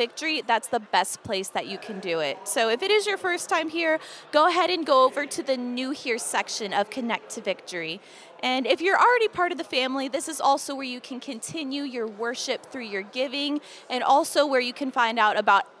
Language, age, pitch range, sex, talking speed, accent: English, 20-39, 235-315 Hz, female, 230 wpm, American